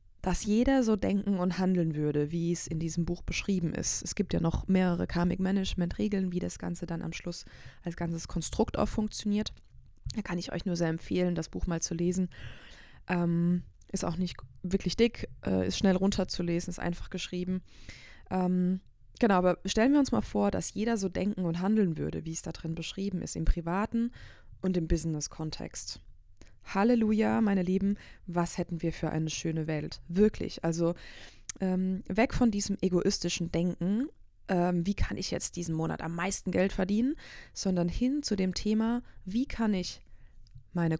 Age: 20-39